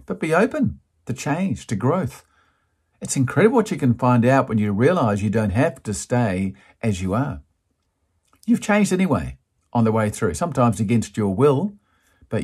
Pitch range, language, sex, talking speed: 95-135 Hz, English, male, 180 wpm